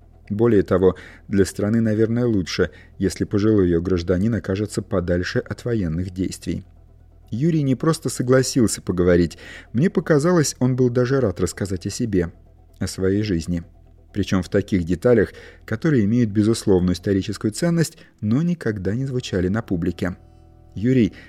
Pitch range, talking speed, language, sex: 90-115 Hz, 135 wpm, Russian, male